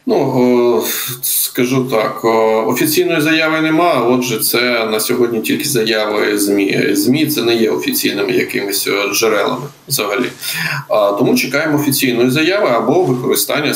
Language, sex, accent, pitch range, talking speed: Ukrainian, male, native, 110-145 Hz, 120 wpm